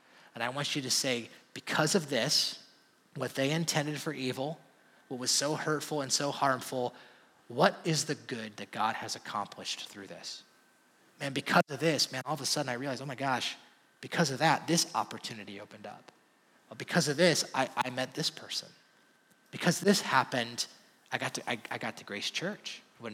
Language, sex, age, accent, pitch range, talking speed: English, male, 30-49, American, 135-180 Hz, 190 wpm